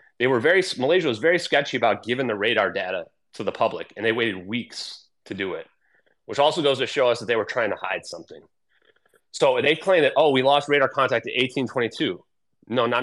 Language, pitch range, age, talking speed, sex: English, 110-155 Hz, 30-49, 220 wpm, male